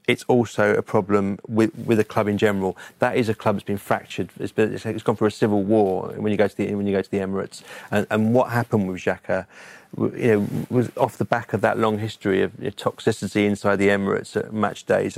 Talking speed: 235 wpm